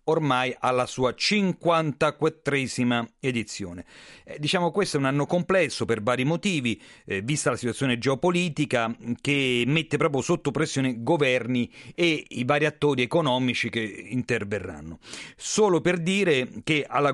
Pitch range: 125-165 Hz